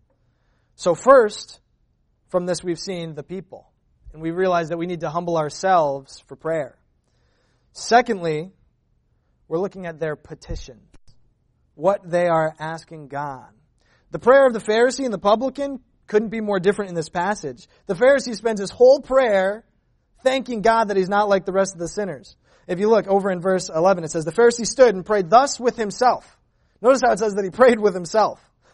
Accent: American